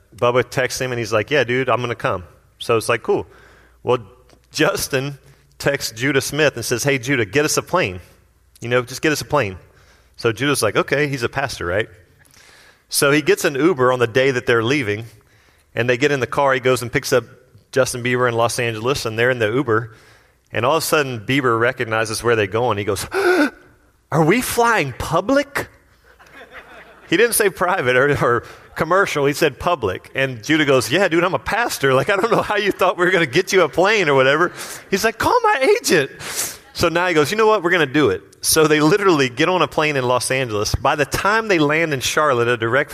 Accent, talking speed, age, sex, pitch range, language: American, 225 wpm, 30-49, male, 120-160 Hz, English